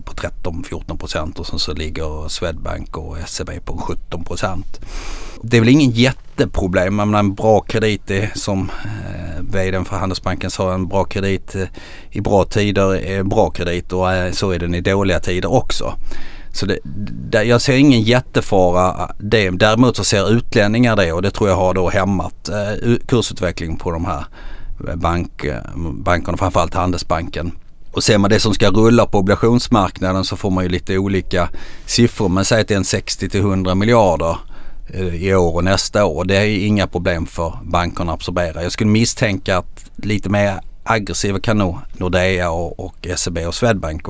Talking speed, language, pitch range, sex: 165 wpm, Swedish, 90-105 Hz, male